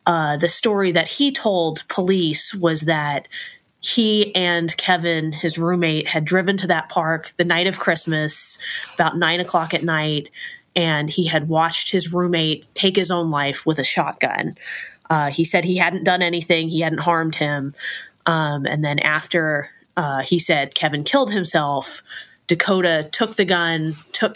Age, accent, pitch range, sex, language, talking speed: 20-39, American, 155-180 Hz, female, English, 165 wpm